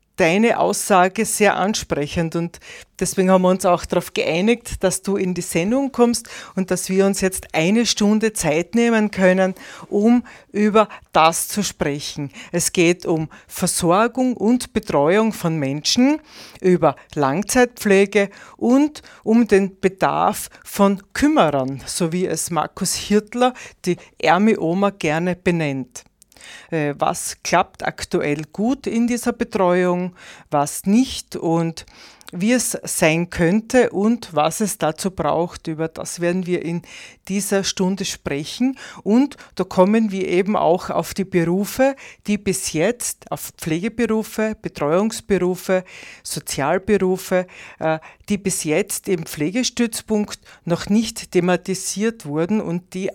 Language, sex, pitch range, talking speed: German, female, 170-215 Hz, 130 wpm